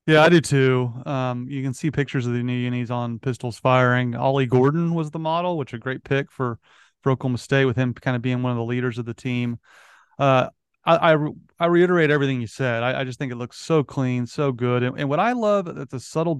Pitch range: 125-145 Hz